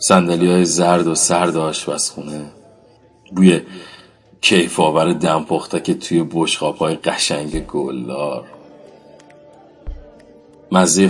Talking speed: 85 wpm